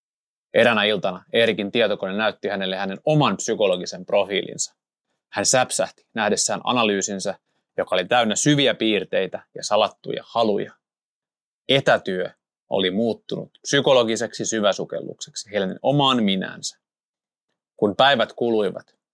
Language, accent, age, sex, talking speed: Finnish, native, 20-39, male, 105 wpm